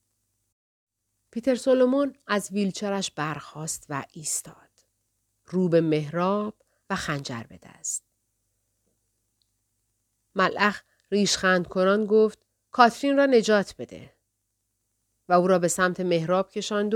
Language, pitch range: Persian, 135-210 Hz